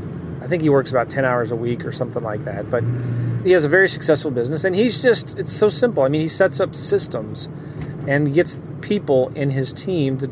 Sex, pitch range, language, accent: male, 140-180 Hz, English, American